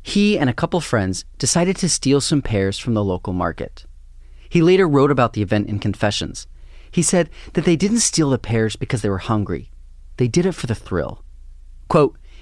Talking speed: 200 wpm